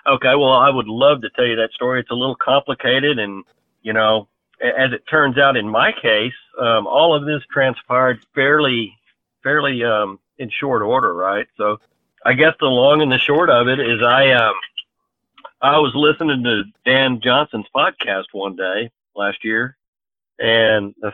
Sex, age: male, 50-69